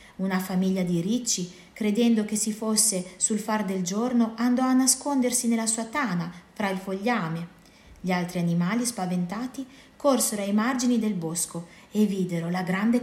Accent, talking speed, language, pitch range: native, 155 wpm, Italian, 175-230 Hz